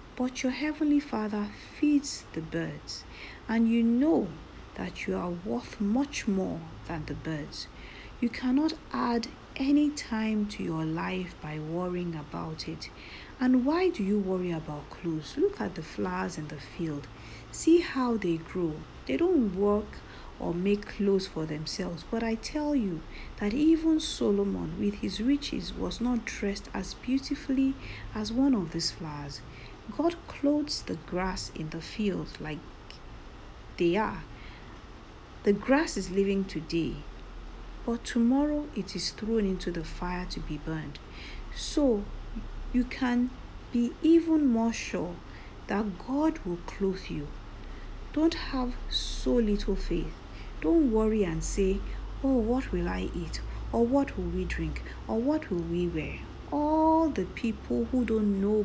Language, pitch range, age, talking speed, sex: English, 165-255 Hz, 50-69, 150 wpm, female